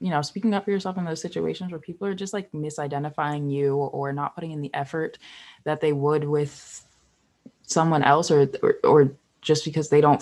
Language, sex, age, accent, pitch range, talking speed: English, female, 20-39, American, 145-170 Hz, 205 wpm